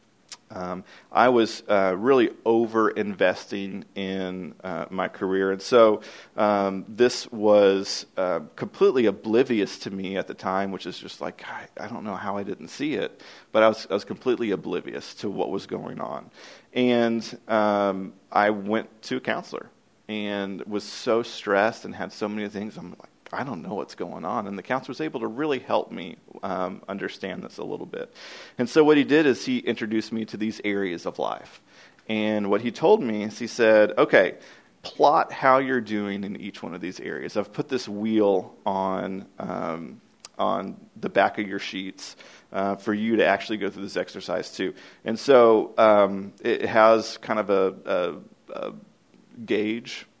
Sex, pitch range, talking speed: male, 100-115 Hz, 185 wpm